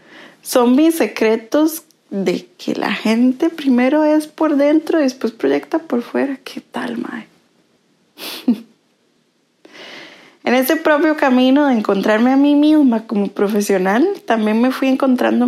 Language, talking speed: Spanish, 135 wpm